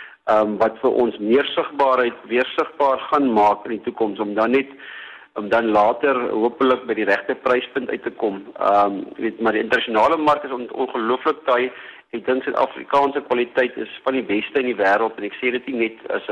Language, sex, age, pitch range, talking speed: English, male, 50-69, 105-130 Hz, 195 wpm